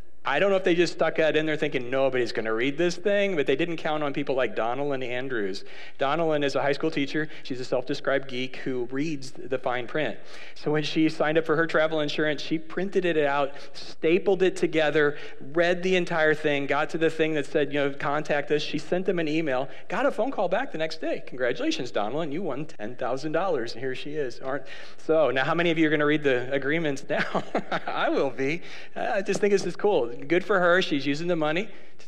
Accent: American